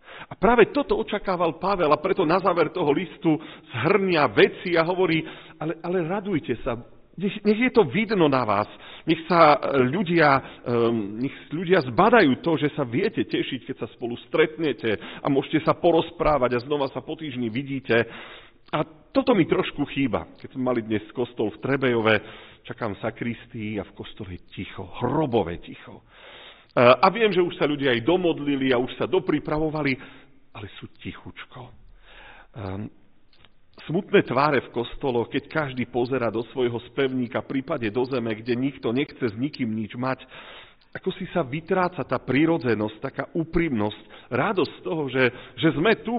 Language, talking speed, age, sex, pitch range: Slovak, 160 wpm, 40-59, male, 120-165 Hz